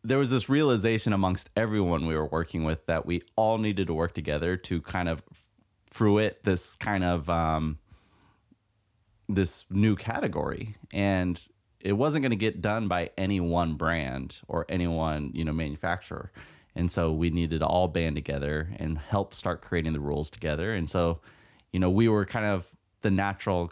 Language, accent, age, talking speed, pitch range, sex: English, American, 30-49, 175 wpm, 80-100 Hz, male